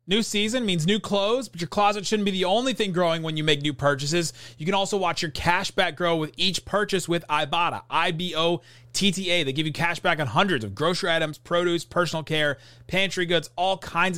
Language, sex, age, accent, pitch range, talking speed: English, male, 30-49, American, 140-180 Hz, 210 wpm